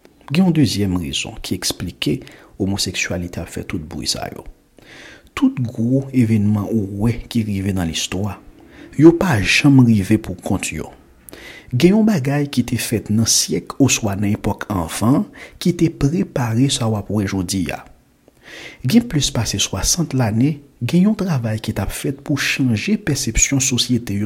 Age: 60-79